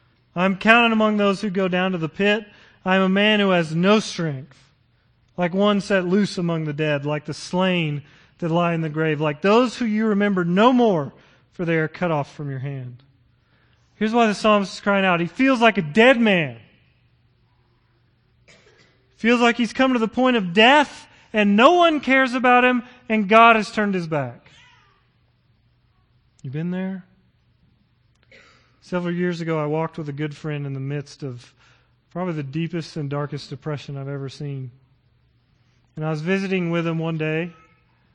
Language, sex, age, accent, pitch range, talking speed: English, male, 30-49, American, 130-185 Hz, 180 wpm